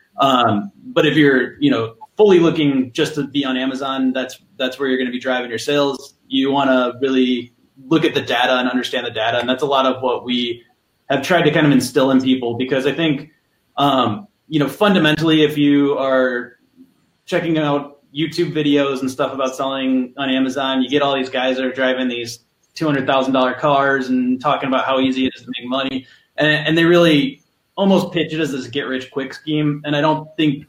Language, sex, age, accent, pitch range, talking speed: English, male, 20-39, American, 130-150 Hz, 225 wpm